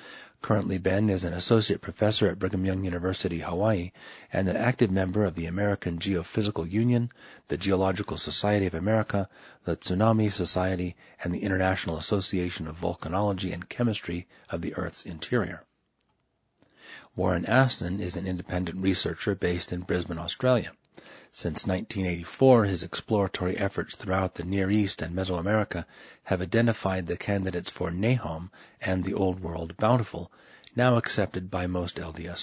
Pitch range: 90-105 Hz